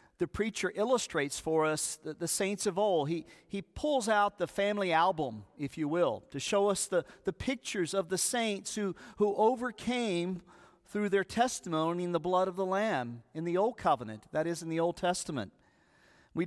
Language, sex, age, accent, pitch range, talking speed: English, male, 50-69, American, 155-200 Hz, 190 wpm